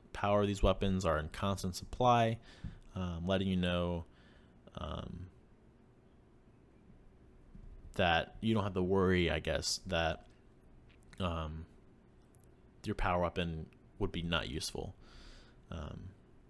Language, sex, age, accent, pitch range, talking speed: English, male, 20-39, American, 85-105 Hz, 115 wpm